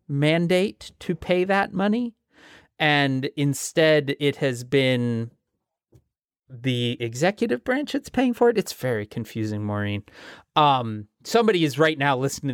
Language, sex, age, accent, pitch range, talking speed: English, male, 30-49, American, 115-160 Hz, 130 wpm